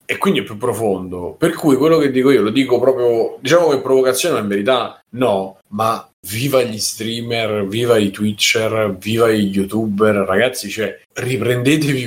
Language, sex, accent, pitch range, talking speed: Italian, male, native, 105-125 Hz, 170 wpm